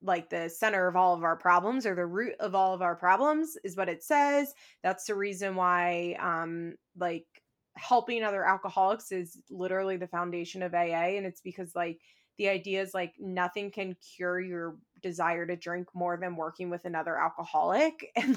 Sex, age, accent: female, 20-39, American